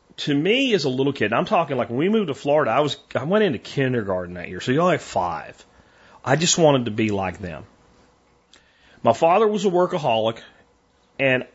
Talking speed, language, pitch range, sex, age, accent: 215 wpm, English, 115-150 Hz, male, 40-59, American